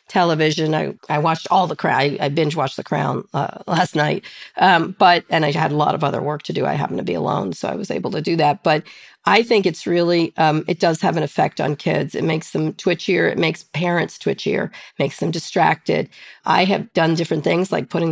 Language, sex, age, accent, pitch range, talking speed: English, female, 40-59, American, 155-190 Hz, 240 wpm